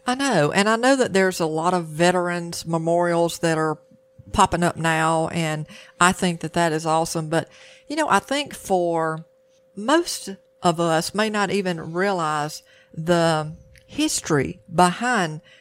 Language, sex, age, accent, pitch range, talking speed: English, female, 50-69, American, 160-200 Hz, 155 wpm